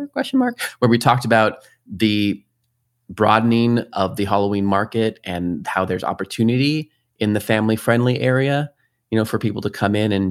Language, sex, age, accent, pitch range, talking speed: English, male, 30-49, American, 95-120 Hz, 170 wpm